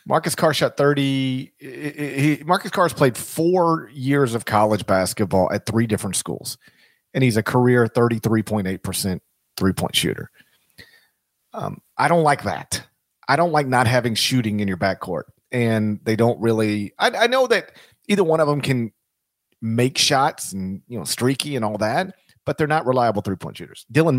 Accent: American